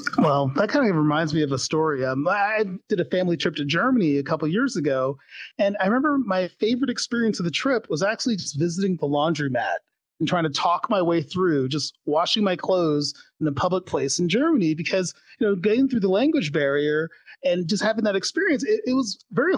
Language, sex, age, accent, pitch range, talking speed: English, male, 30-49, American, 155-225 Hz, 220 wpm